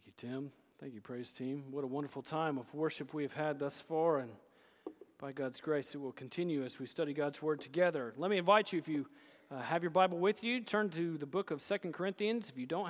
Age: 40-59